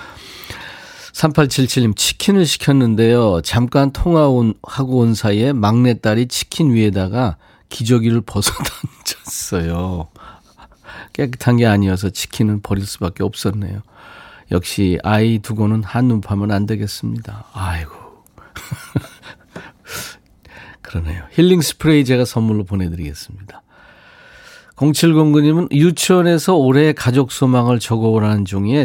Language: Korean